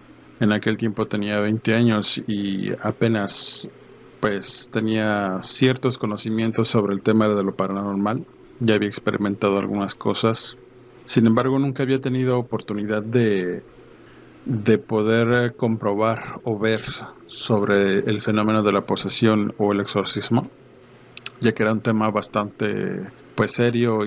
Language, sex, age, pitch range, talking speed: Spanish, male, 50-69, 105-120 Hz, 130 wpm